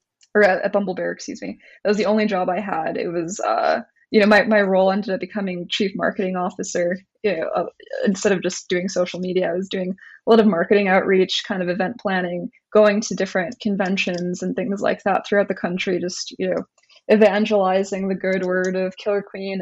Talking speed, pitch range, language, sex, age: 210 wpm, 190-220 Hz, English, female, 20-39